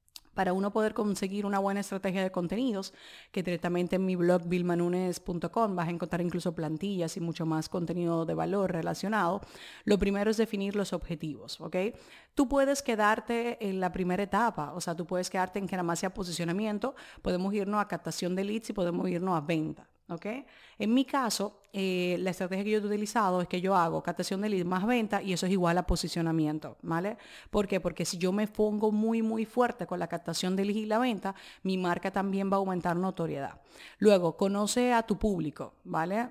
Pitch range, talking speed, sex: 175-210 Hz, 195 wpm, female